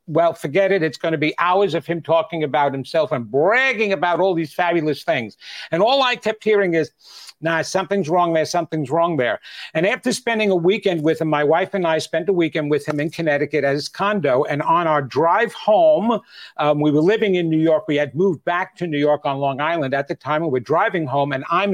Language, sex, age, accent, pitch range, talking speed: English, male, 50-69, American, 155-195 Hz, 230 wpm